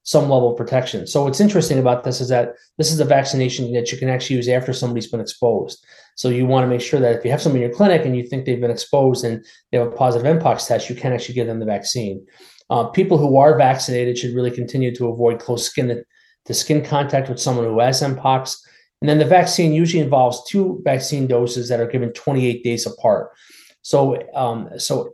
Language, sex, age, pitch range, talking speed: English, male, 30-49, 120-145 Hz, 230 wpm